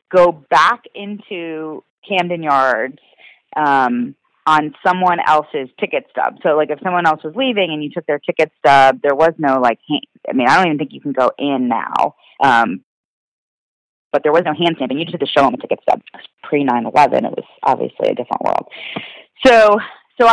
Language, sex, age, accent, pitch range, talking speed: English, female, 30-49, American, 140-185 Hz, 200 wpm